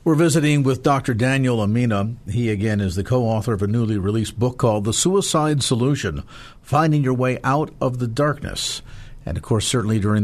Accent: American